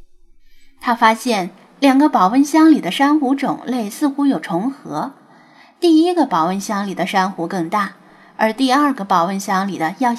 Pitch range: 190-265 Hz